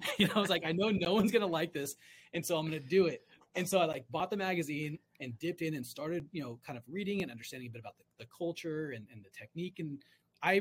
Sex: male